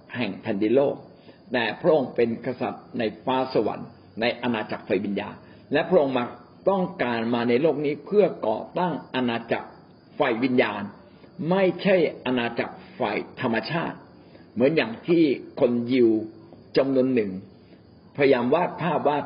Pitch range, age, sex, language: 120-150 Hz, 60-79, male, Thai